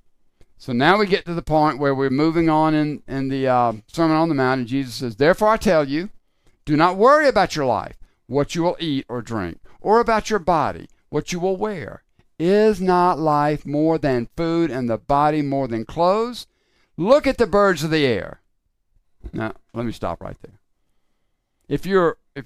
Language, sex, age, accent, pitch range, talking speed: English, male, 60-79, American, 125-205 Hz, 195 wpm